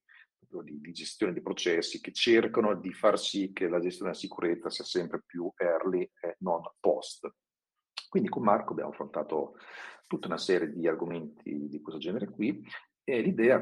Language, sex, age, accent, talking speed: Italian, male, 50-69, native, 160 wpm